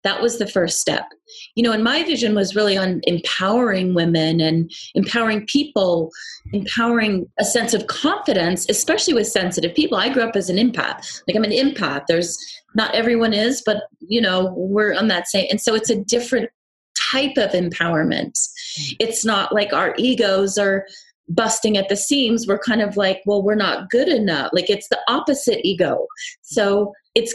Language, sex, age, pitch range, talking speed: English, female, 30-49, 185-240 Hz, 180 wpm